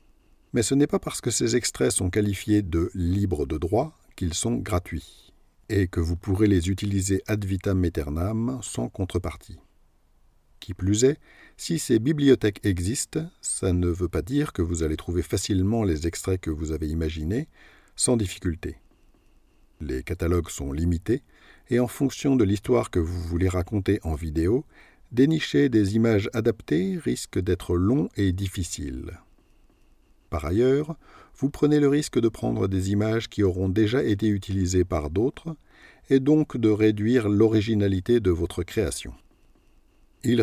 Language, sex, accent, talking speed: French, male, French, 155 wpm